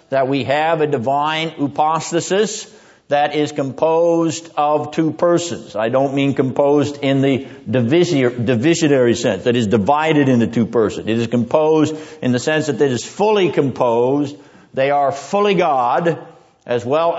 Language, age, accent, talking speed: English, 60-79, American, 150 wpm